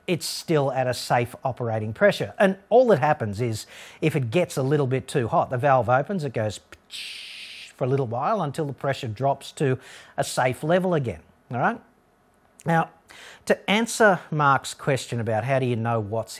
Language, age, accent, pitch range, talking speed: English, 40-59, Australian, 120-160 Hz, 185 wpm